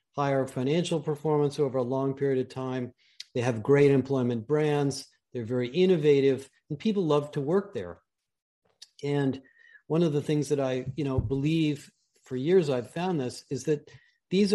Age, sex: 50-69, male